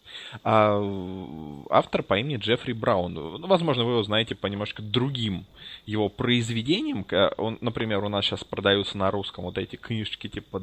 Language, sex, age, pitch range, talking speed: Russian, male, 20-39, 100-135 Hz, 155 wpm